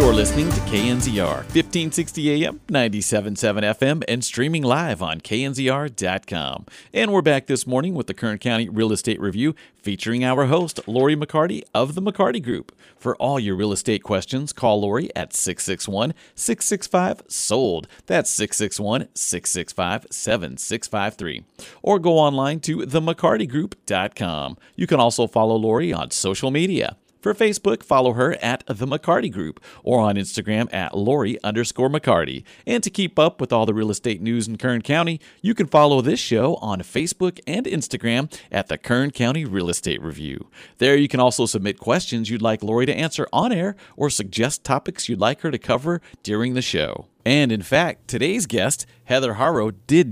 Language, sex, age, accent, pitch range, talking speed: English, male, 40-59, American, 110-150 Hz, 160 wpm